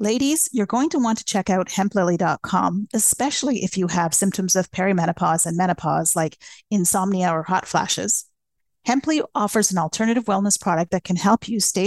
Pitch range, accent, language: 180-230 Hz, American, English